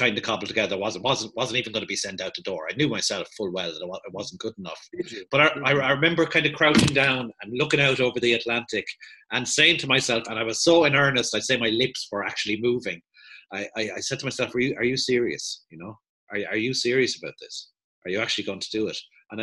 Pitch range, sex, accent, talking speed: 115-140 Hz, male, Irish, 265 wpm